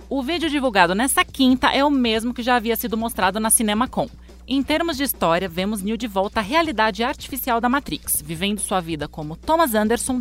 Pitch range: 195-275 Hz